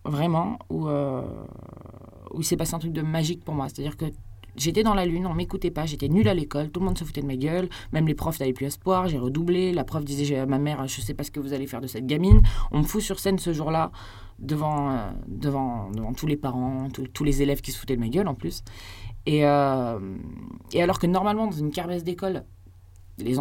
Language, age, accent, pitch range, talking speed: French, 20-39, French, 130-185 Hz, 250 wpm